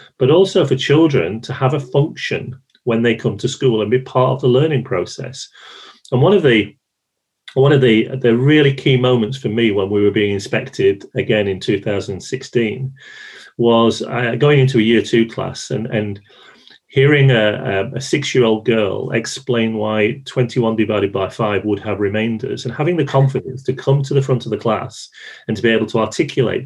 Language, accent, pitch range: English, British, 110-135 Hz